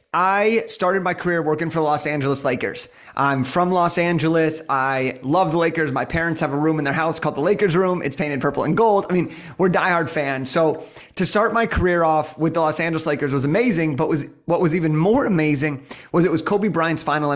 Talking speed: 230 wpm